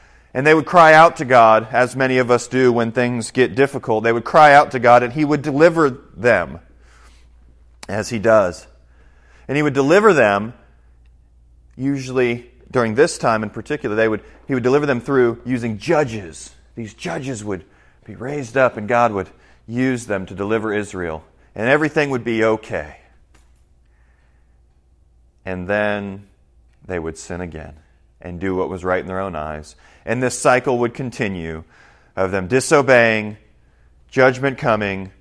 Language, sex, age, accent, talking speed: English, male, 40-59, American, 160 wpm